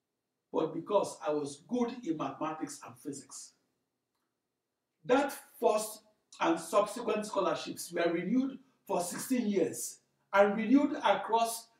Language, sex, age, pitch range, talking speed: English, male, 60-79, 170-265 Hz, 110 wpm